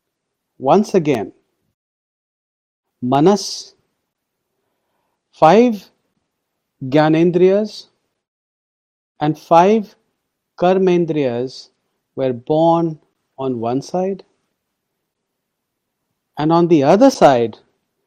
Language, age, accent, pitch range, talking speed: English, 40-59, Indian, 140-200 Hz, 60 wpm